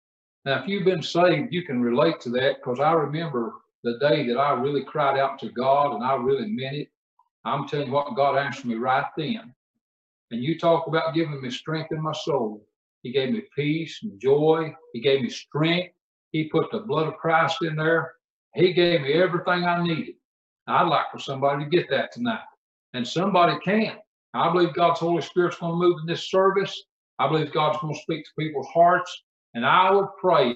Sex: male